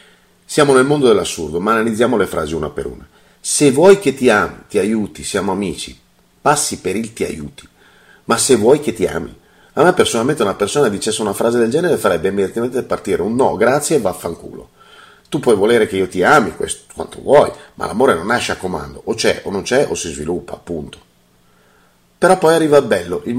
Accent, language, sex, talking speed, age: native, Italian, male, 210 wpm, 40-59